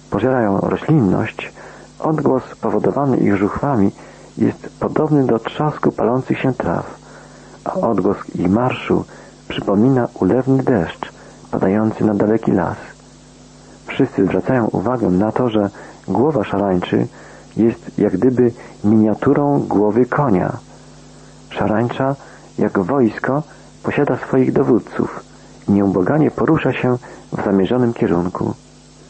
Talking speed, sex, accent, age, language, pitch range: 105 wpm, male, native, 40-59, Polish, 100-125 Hz